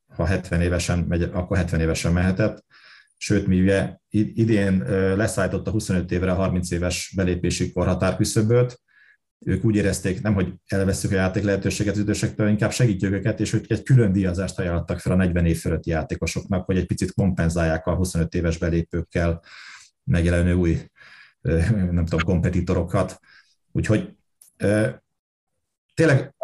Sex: male